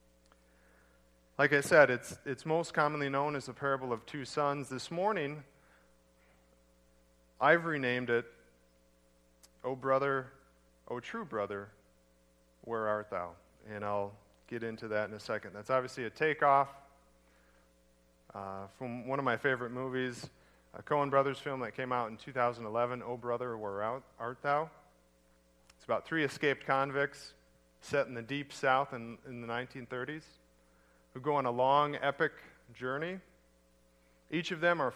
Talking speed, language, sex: 150 wpm, English, male